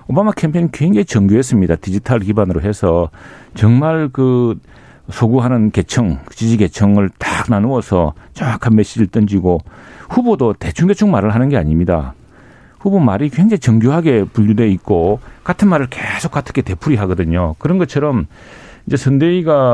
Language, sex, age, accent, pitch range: Korean, male, 40-59, native, 100-135 Hz